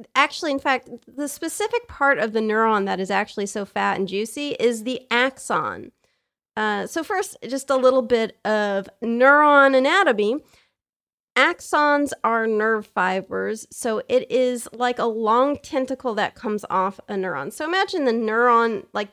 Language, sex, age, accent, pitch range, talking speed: English, female, 30-49, American, 195-255 Hz, 155 wpm